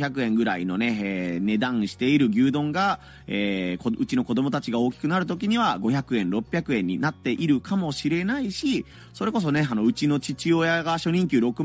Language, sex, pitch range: Japanese, male, 120-180 Hz